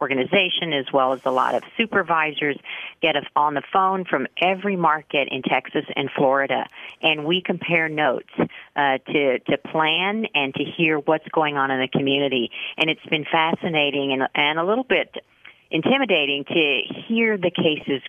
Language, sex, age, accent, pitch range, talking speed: English, female, 40-59, American, 140-180 Hz, 170 wpm